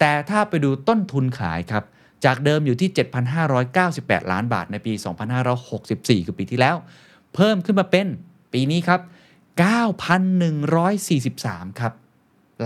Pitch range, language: 105-155 Hz, Thai